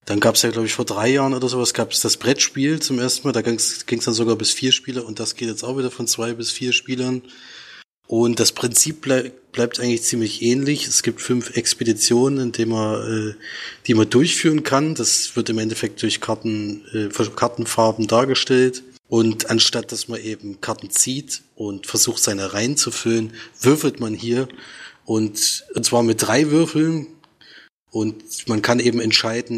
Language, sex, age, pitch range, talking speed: German, male, 20-39, 110-125 Hz, 190 wpm